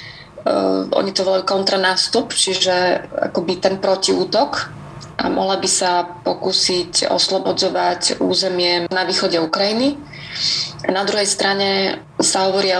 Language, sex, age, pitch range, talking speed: Slovak, female, 30-49, 175-195 Hz, 115 wpm